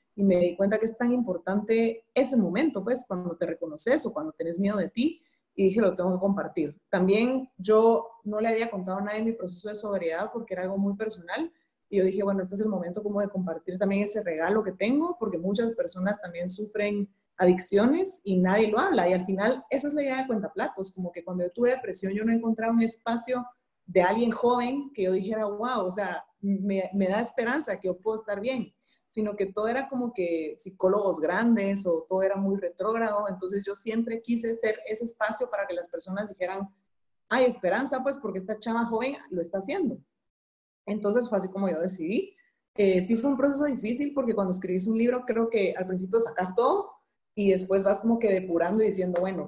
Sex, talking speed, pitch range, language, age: female, 215 wpm, 185-230 Hz, Spanish, 30-49